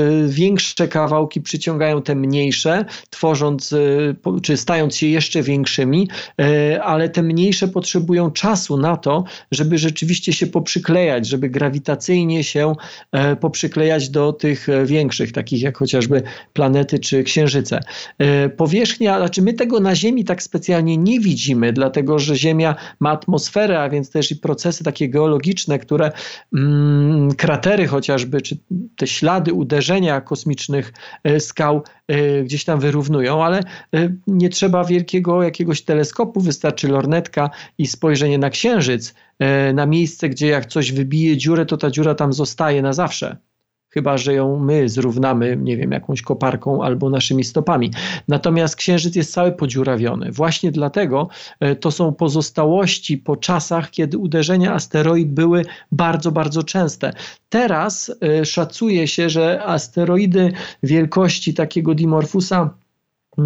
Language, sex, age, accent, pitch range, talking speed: Polish, male, 40-59, native, 145-175 Hz, 125 wpm